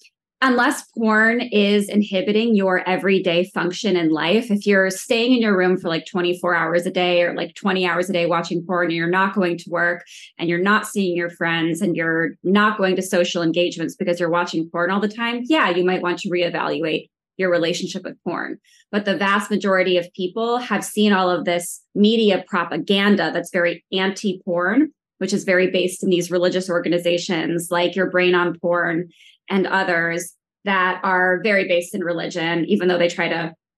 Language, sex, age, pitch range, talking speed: English, female, 20-39, 175-205 Hz, 190 wpm